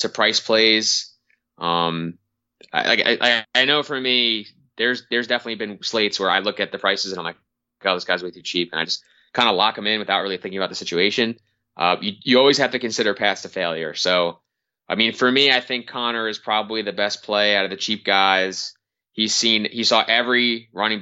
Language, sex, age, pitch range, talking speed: English, male, 20-39, 90-110 Hz, 230 wpm